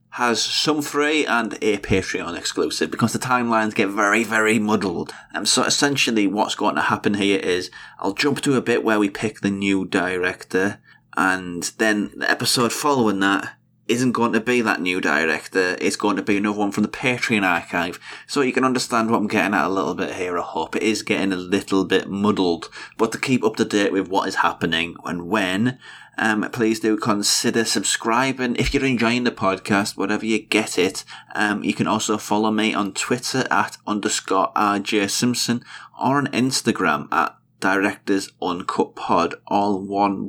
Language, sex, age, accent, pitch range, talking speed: English, male, 20-39, British, 100-120 Hz, 185 wpm